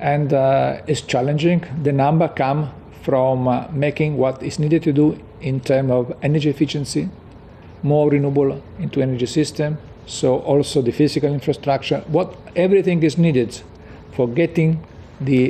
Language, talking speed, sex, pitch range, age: English, 145 wpm, male, 125-150 Hz, 50-69